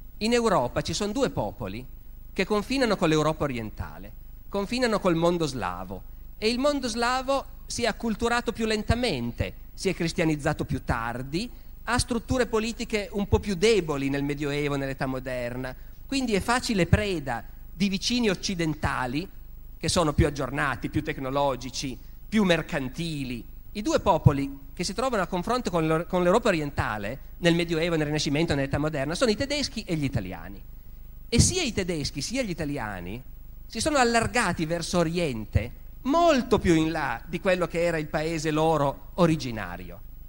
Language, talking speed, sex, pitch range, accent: Italian, 155 wpm, male, 125-200 Hz, native